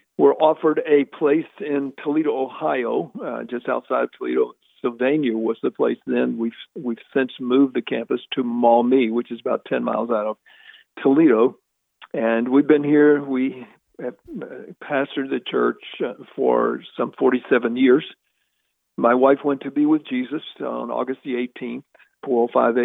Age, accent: 50-69, American